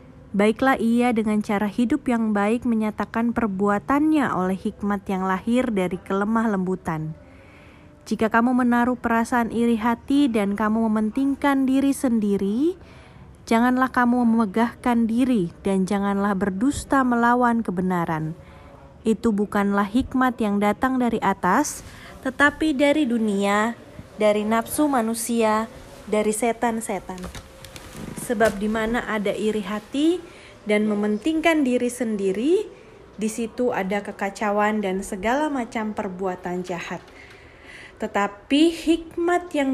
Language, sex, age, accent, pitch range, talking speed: Indonesian, female, 20-39, native, 205-250 Hz, 105 wpm